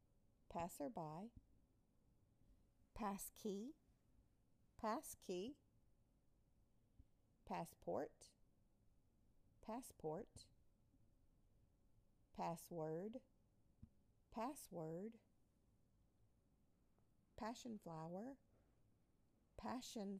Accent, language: American, English